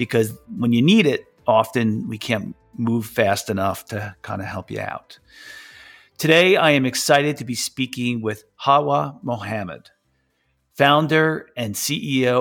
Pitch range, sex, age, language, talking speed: 115-135 Hz, male, 40-59, English, 145 wpm